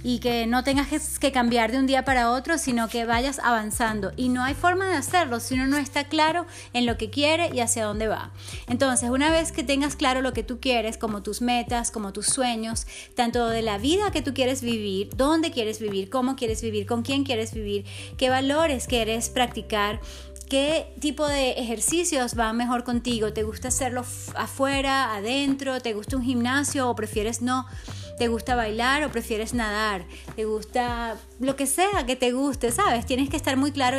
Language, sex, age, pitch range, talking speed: English, female, 30-49, 225-275 Hz, 195 wpm